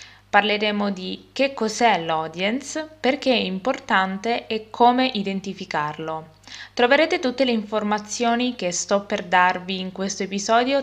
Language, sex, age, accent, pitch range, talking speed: Italian, female, 20-39, native, 180-250 Hz, 120 wpm